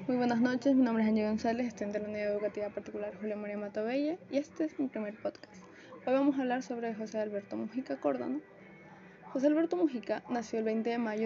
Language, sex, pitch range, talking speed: Spanish, female, 210-265 Hz, 215 wpm